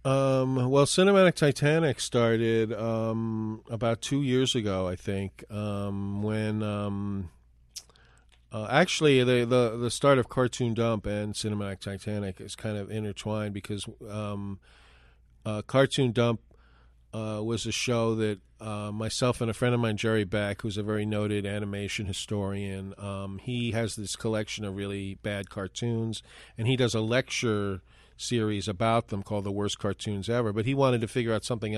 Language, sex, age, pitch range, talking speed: English, male, 40-59, 100-120 Hz, 160 wpm